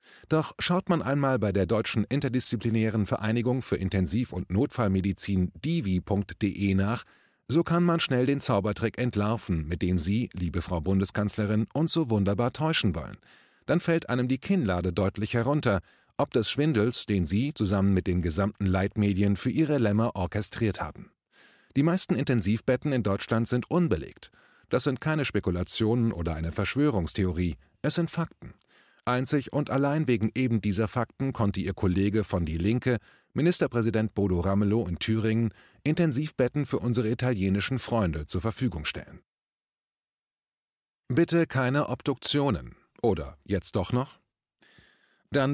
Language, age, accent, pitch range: German, 30-49, German, 100-135 Hz